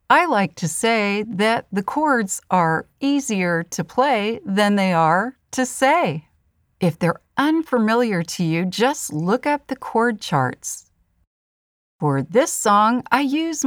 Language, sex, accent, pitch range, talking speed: English, female, American, 165-260 Hz, 140 wpm